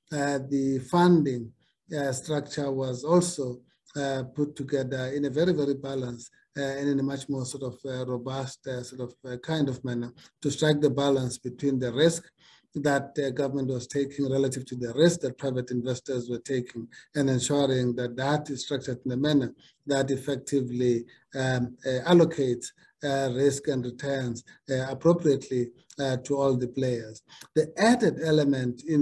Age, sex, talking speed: 50-69, male, 170 wpm